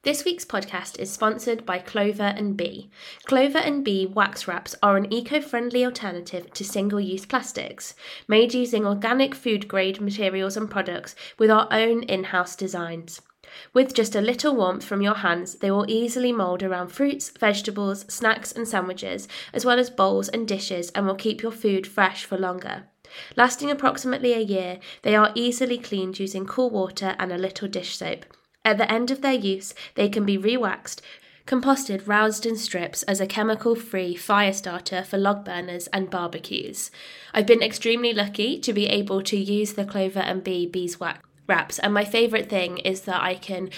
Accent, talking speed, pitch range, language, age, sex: British, 175 wpm, 190-230 Hz, English, 20-39, female